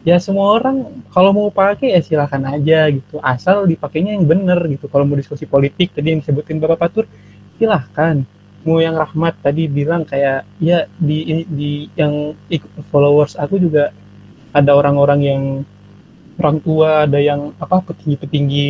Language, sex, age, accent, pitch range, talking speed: Indonesian, male, 20-39, native, 145-165 Hz, 155 wpm